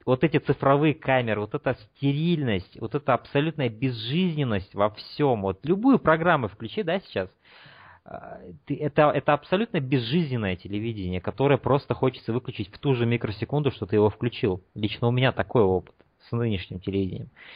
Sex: male